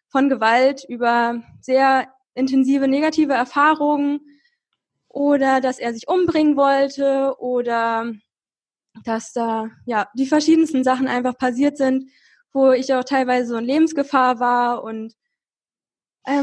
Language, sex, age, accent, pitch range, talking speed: German, female, 20-39, German, 255-290 Hz, 120 wpm